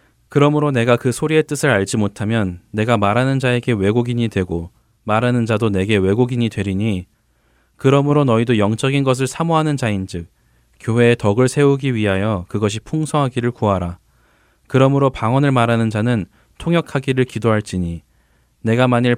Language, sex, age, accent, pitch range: Korean, male, 20-39, native, 100-130 Hz